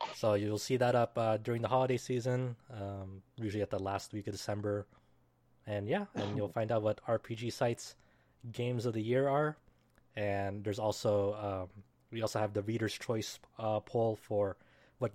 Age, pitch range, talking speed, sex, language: 20-39, 100-120 Hz, 180 wpm, male, English